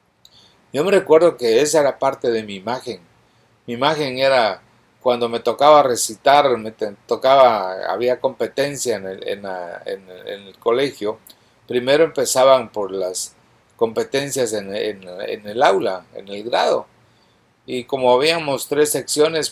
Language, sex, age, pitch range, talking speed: English, male, 50-69, 110-140 Hz, 150 wpm